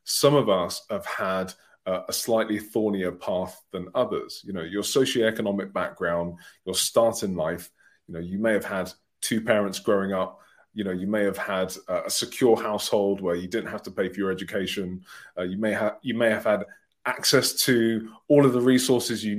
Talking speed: 200 wpm